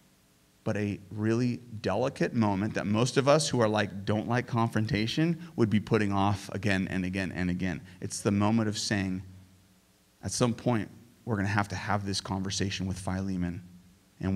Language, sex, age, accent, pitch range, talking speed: English, male, 30-49, American, 100-140 Hz, 175 wpm